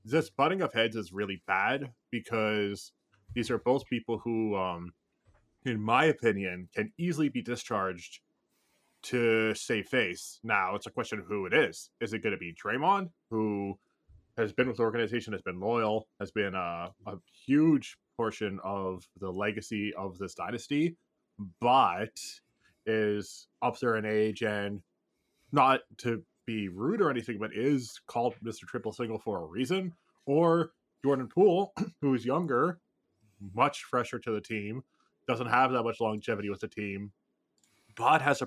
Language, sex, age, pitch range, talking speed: English, male, 20-39, 105-135 Hz, 160 wpm